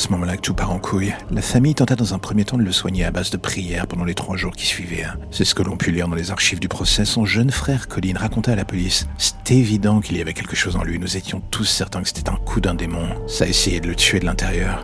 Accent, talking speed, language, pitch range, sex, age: French, 295 wpm, French, 90-105 Hz, male, 50-69